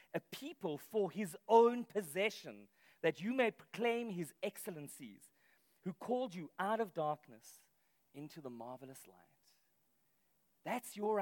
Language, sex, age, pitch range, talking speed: English, male, 40-59, 170-245 Hz, 130 wpm